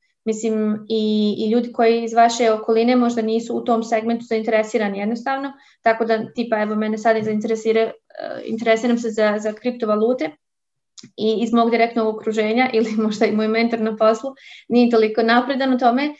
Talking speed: 160 wpm